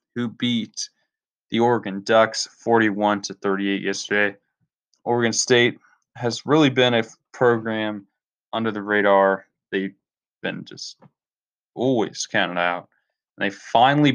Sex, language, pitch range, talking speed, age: male, English, 95-115 Hz, 125 wpm, 20-39